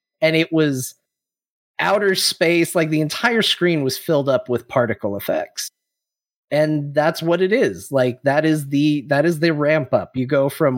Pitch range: 120-155 Hz